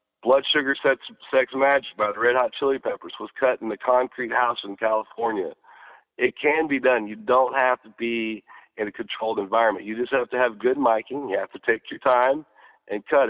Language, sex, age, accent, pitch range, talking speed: English, male, 40-59, American, 115-135 Hz, 210 wpm